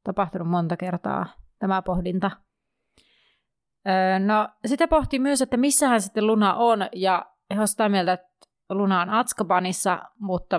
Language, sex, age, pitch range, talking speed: Finnish, female, 30-49, 180-220 Hz, 130 wpm